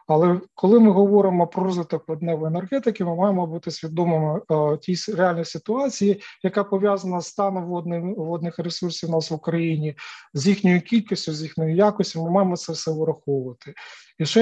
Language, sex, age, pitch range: Ukrainian, male, 40-59, 165-200 Hz